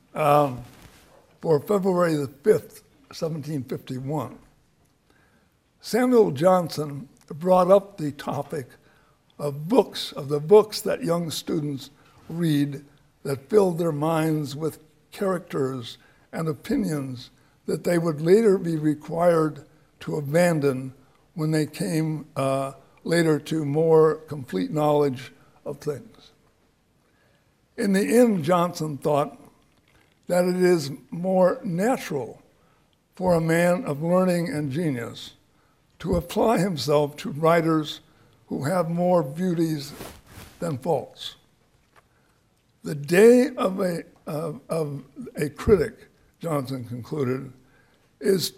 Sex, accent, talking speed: male, American, 105 wpm